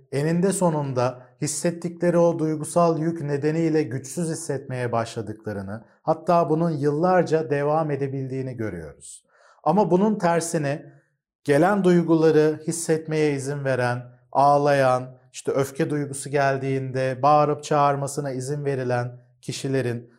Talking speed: 100 wpm